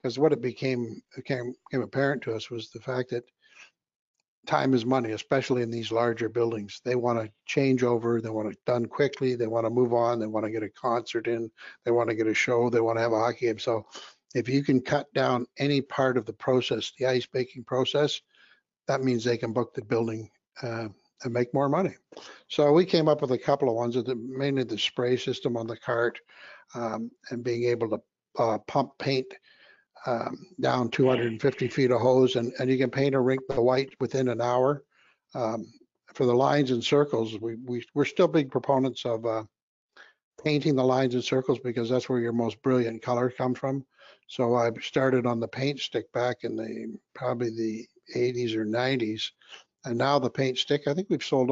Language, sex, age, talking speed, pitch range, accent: English, male, 60-79, 205 wpm, 115-130 Hz, American